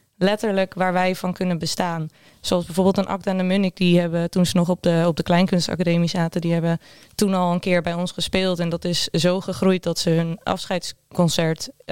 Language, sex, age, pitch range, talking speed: English, female, 20-39, 170-195 Hz, 210 wpm